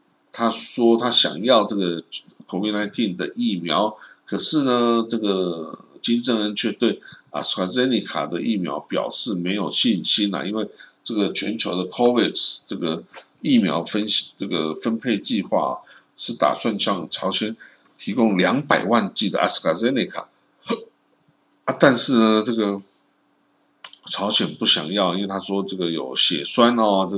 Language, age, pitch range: Chinese, 50-69, 90-110 Hz